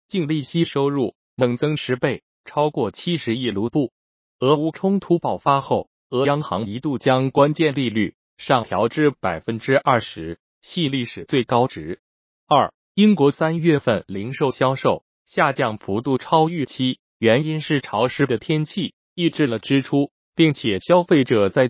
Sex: male